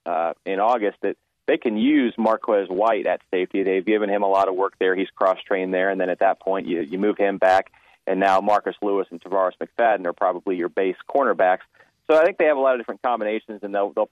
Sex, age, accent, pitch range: male, 30-49, American, 95-110 Hz